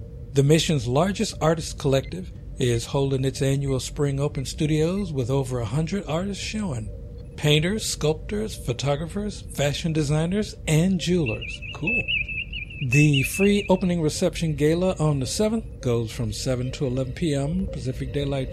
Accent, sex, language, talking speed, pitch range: American, male, English, 135 wpm, 125-160 Hz